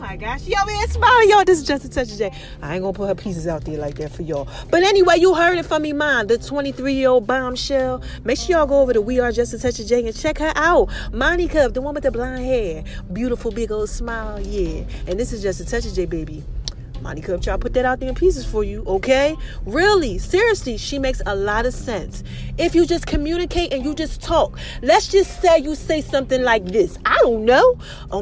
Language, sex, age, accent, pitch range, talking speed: English, female, 30-49, American, 225-310 Hz, 245 wpm